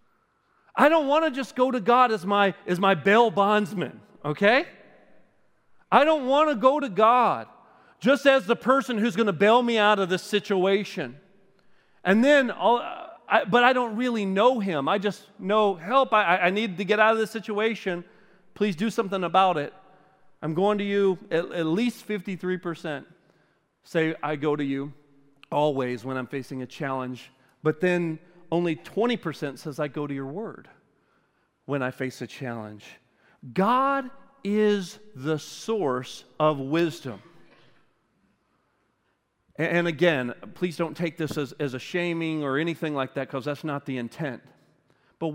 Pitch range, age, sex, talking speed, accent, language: 150-220 Hz, 40-59, male, 160 wpm, American, English